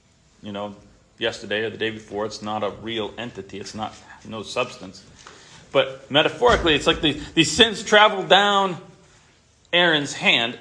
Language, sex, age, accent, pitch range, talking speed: English, male, 40-59, American, 115-190 Hz, 155 wpm